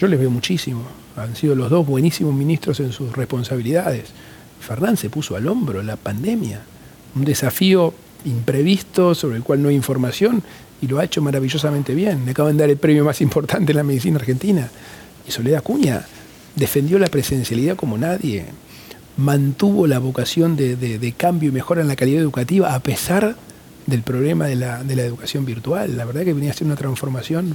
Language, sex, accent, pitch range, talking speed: Spanish, male, Argentinian, 130-175 Hz, 185 wpm